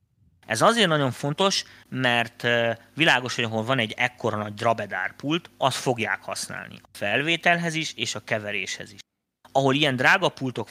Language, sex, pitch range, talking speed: Hungarian, male, 115-150 Hz, 150 wpm